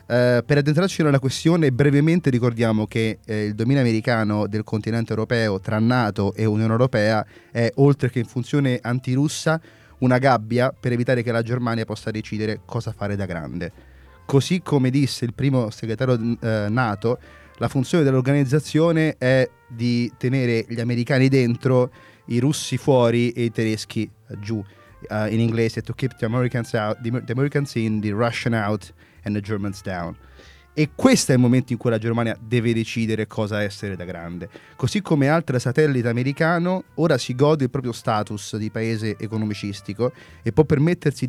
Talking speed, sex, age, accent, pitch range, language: 165 wpm, male, 30-49, native, 110-135 Hz, Italian